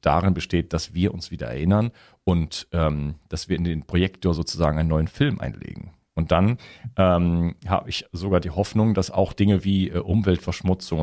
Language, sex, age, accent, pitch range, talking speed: German, male, 40-59, German, 85-105 Hz, 180 wpm